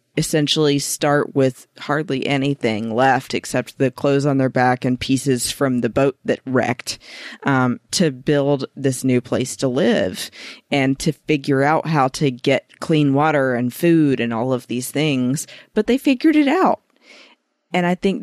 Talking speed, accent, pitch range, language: 170 wpm, American, 125-150 Hz, English